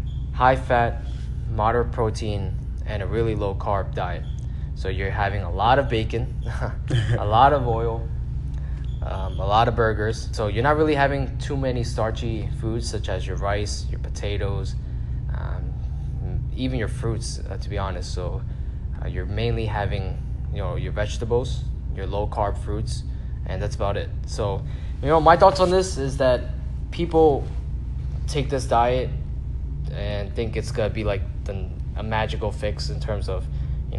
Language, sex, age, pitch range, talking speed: English, male, 20-39, 70-115 Hz, 160 wpm